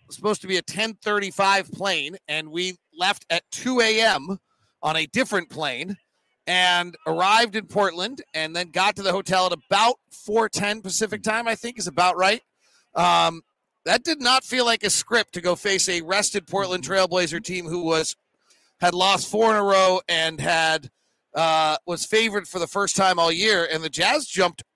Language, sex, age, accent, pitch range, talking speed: English, male, 40-59, American, 165-210 Hz, 195 wpm